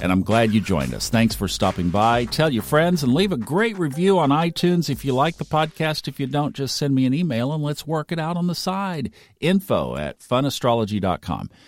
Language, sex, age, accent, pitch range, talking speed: English, male, 50-69, American, 105-145 Hz, 225 wpm